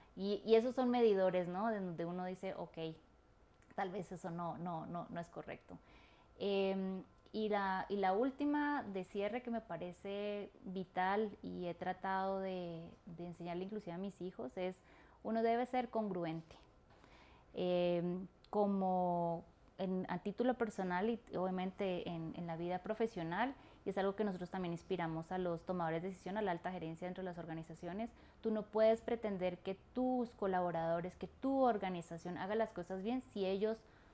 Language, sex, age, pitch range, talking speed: Spanish, female, 20-39, 180-215 Hz, 170 wpm